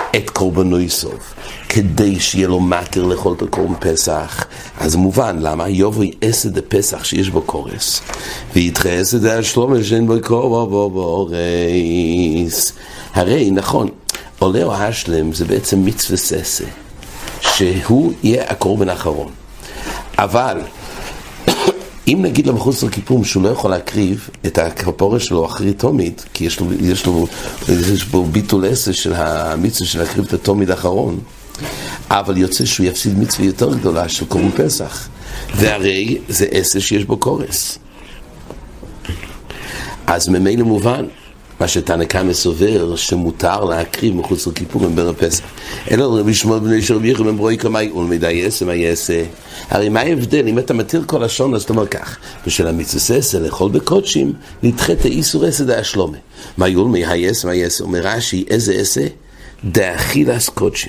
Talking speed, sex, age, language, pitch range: 105 wpm, male, 60-79, English, 90-110 Hz